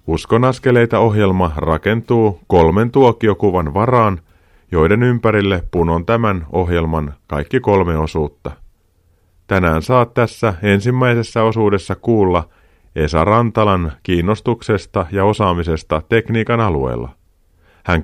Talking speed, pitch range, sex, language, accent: 95 wpm, 85-110 Hz, male, Finnish, native